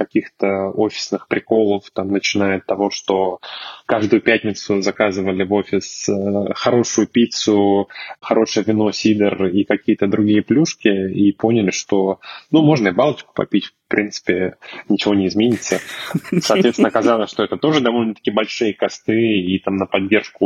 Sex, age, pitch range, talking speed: male, 10-29, 95-110 Hz, 135 wpm